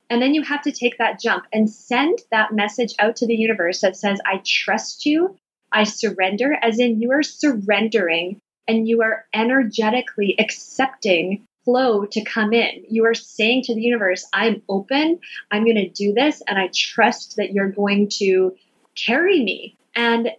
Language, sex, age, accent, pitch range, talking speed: English, female, 20-39, American, 190-230 Hz, 175 wpm